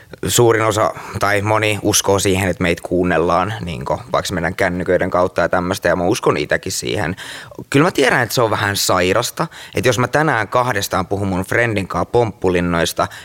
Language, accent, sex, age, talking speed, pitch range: Finnish, native, male, 20-39, 175 wpm, 100-125 Hz